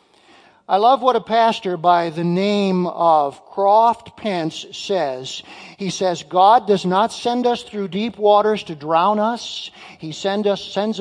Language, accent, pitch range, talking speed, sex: English, American, 185-265 Hz, 145 wpm, male